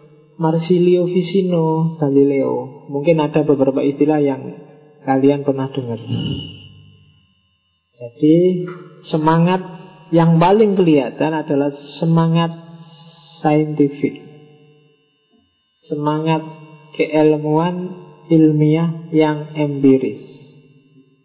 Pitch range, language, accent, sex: 145-160 Hz, Indonesian, native, male